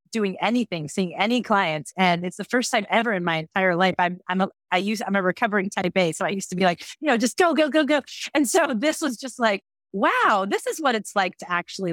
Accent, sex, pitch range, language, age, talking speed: American, female, 180-220 Hz, English, 30-49, 260 wpm